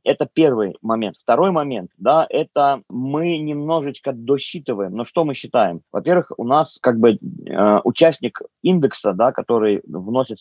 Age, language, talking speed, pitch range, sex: 20-39, Russian, 145 wpm, 105-135 Hz, male